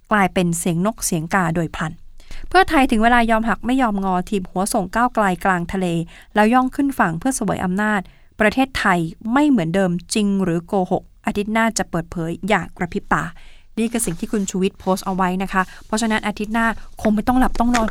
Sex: female